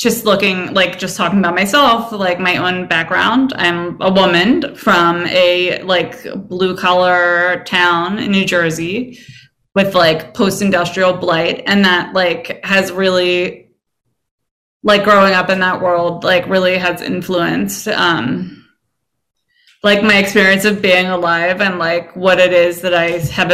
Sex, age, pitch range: female, 20-39, 180-210 Hz